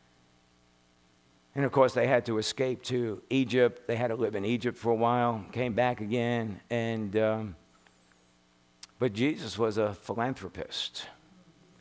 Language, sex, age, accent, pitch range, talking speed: English, male, 50-69, American, 110-145 Hz, 140 wpm